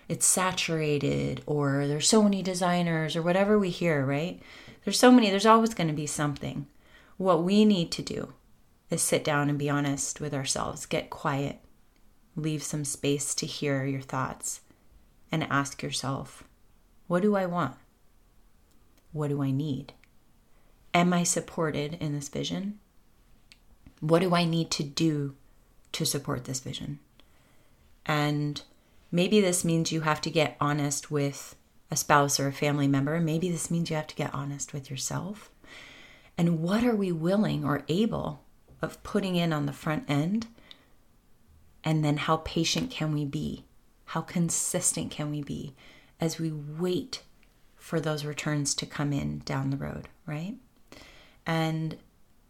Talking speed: 155 wpm